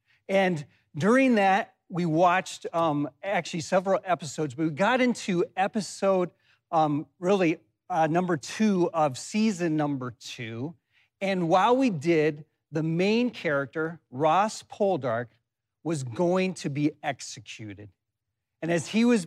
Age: 40-59